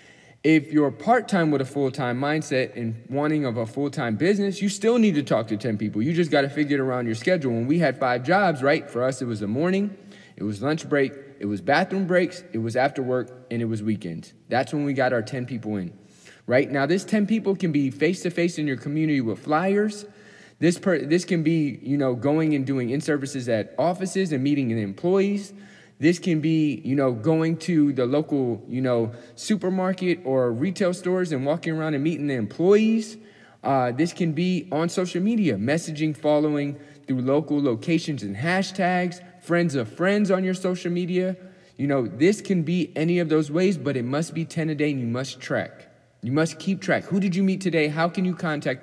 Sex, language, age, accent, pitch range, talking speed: male, English, 20-39, American, 130-180 Hz, 210 wpm